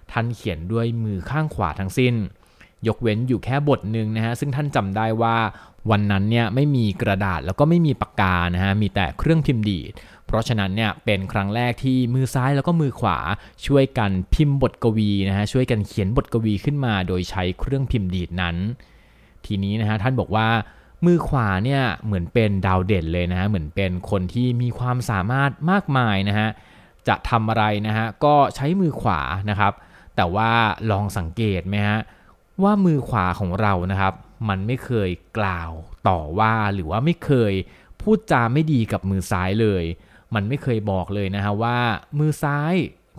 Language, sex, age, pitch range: Thai, male, 20-39, 95-125 Hz